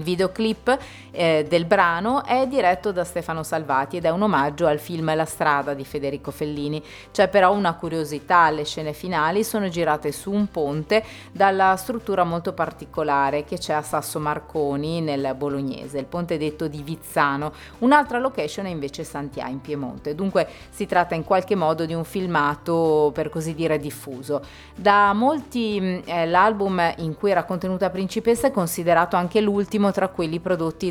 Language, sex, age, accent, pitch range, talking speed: Italian, female, 30-49, native, 150-195 Hz, 165 wpm